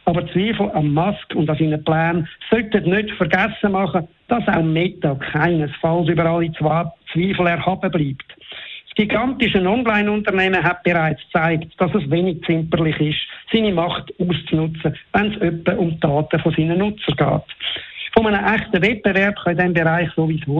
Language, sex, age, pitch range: German, male, 60-79, 160-195 Hz